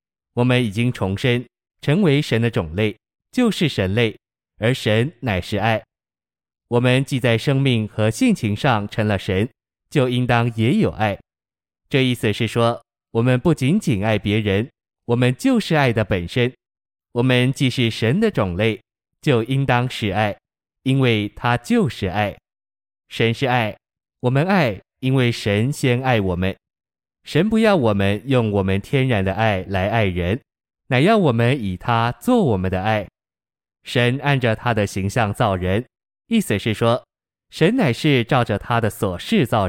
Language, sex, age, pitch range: Chinese, male, 20-39, 105-130 Hz